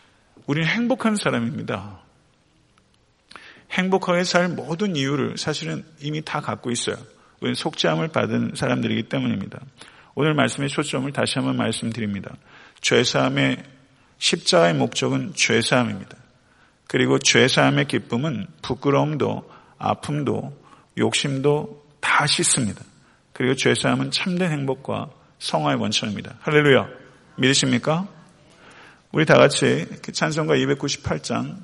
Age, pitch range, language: 50-69, 120-150 Hz, Korean